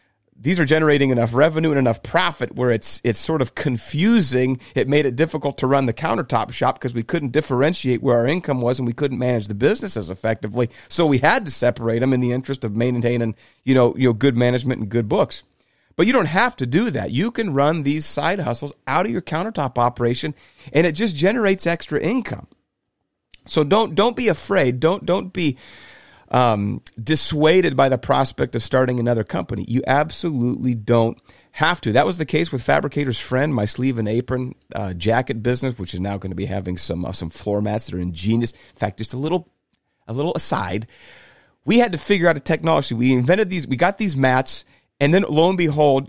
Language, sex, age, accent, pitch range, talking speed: English, male, 40-59, American, 120-160 Hz, 210 wpm